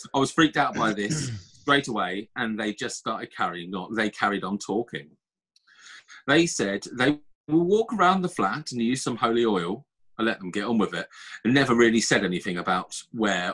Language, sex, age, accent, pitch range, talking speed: English, male, 30-49, British, 105-150 Hz, 200 wpm